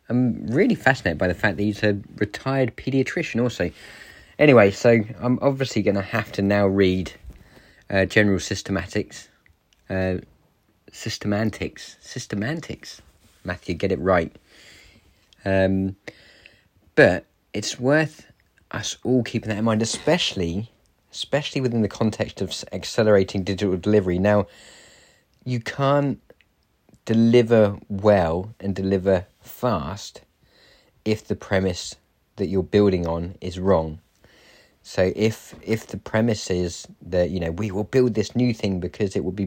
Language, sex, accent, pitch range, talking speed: English, male, British, 90-110 Hz, 130 wpm